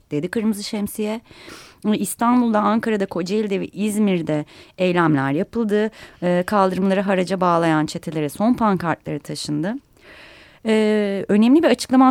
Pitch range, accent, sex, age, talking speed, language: 175-220 Hz, native, female, 30-49, 110 wpm, Turkish